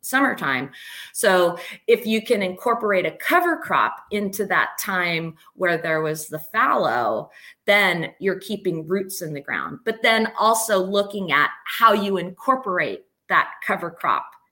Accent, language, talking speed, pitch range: American, English, 145 wpm, 175-225 Hz